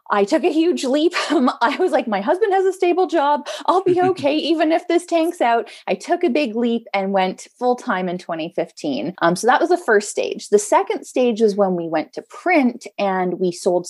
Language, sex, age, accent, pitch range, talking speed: English, female, 20-39, American, 185-265 Hz, 220 wpm